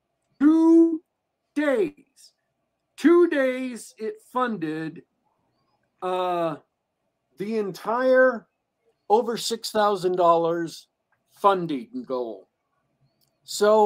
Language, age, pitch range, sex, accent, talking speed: English, 50-69, 150-215 Hz, male, American, 70 wpm